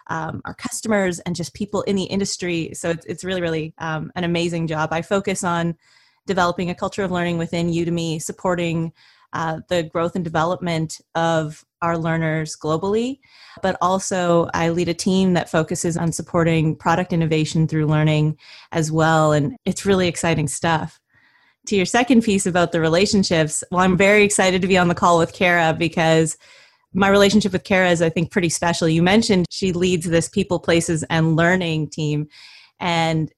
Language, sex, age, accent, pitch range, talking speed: English, female, 30-49, American, 160-190 Hz, 175 wpm